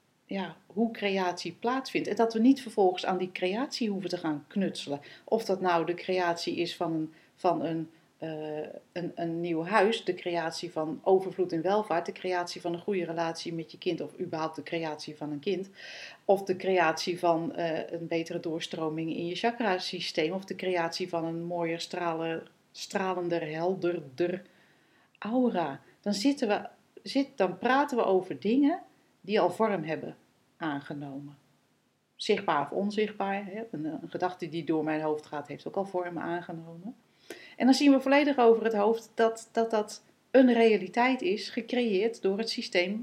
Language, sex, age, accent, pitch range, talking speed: Dutch, female, 40-59, Dutch, 165-215 Hz, 170 wpm